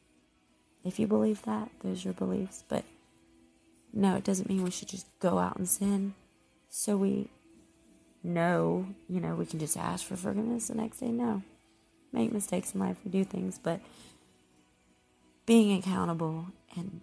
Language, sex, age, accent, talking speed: English, female, 30-49, American, 160 wpm